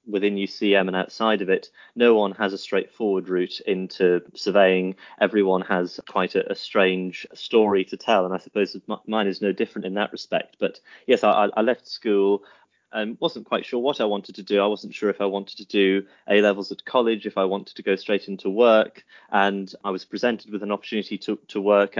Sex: male